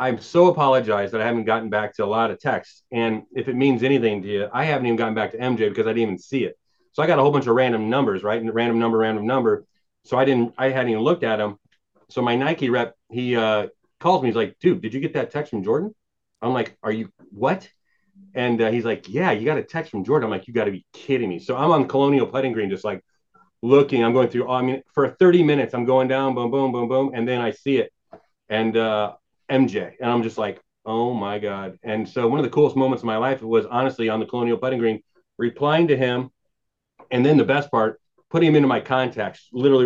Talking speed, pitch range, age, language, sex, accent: 255 wpm, 115-145 Hz, 30-49, English, male, American